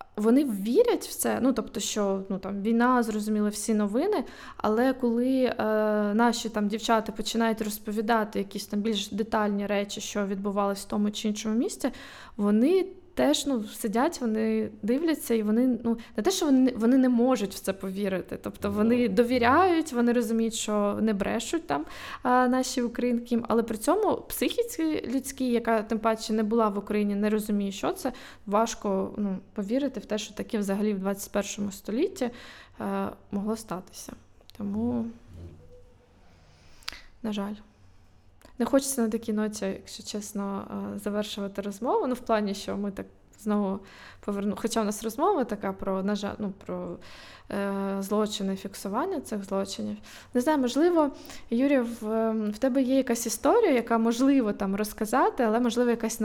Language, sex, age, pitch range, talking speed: Ukrainian, female, 20-39, 205-245 Hz, 150 wpm